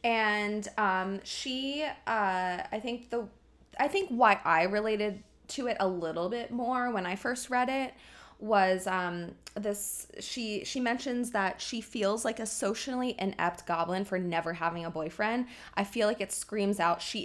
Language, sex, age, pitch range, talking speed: English, female, 20-39, 180-240 Hz, 170 wpm